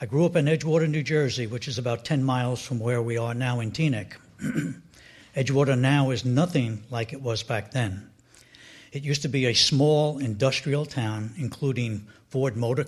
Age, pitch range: 60-79, 120-150 Hz